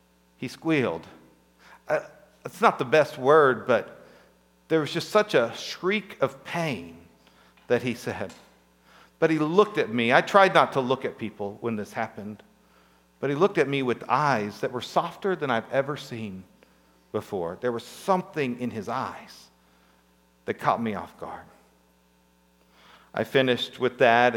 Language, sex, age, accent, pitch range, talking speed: English, male, 50-69, American, 110-170 Hz, 160 wpm